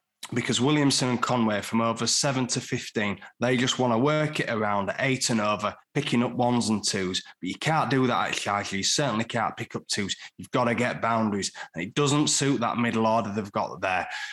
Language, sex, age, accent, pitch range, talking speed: English, male, 20-39, British, 110-130 Hz, 220 wpm